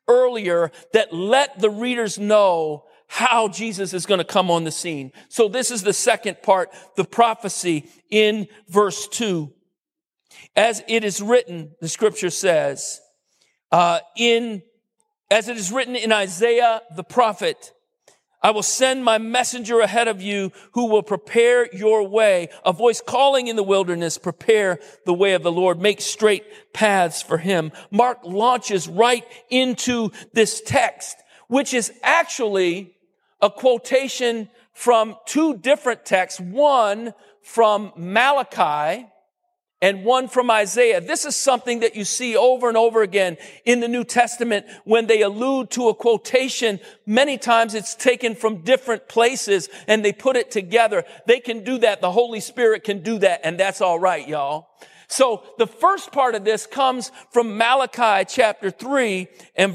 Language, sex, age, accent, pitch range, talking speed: English, male, 50-69, American, 195-245 Hz, 155 wpm